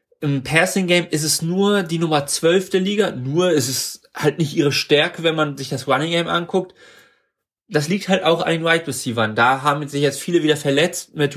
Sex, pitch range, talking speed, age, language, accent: male, 130-165 Hz, 200 wpm, 30-49, German, German